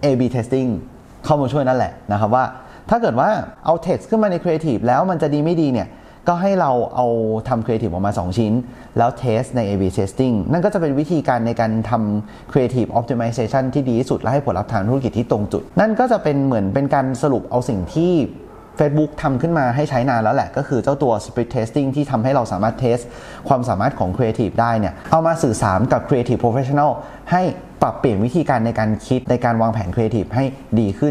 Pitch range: 110-145 Hz